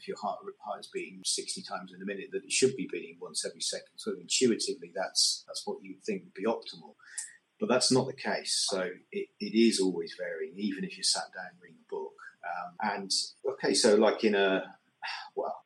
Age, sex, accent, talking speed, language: 30-49, male, British, 220 wpm, English